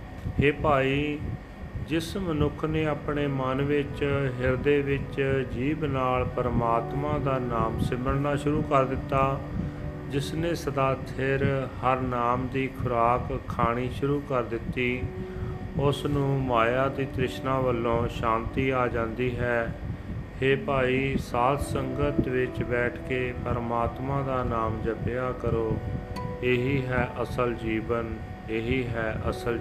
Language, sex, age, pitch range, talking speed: Punjabi, male, 40-59, 115-135 Hz, 120 wpm